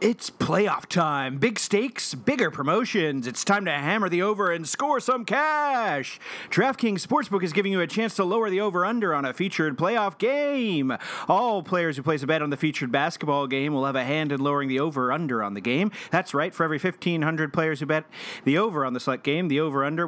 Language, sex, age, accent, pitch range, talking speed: English, male, 40-59, American, 140-215 Hz, 220 wpm